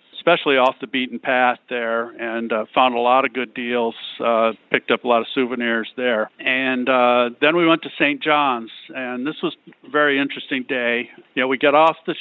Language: English